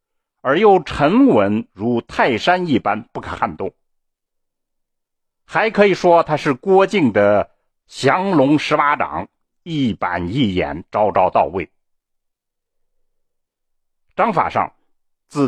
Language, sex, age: Chinese, male, 60-79